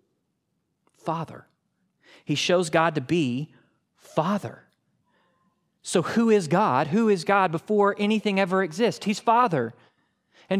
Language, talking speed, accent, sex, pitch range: English, 120 wpm, American, male, 155-195 Hz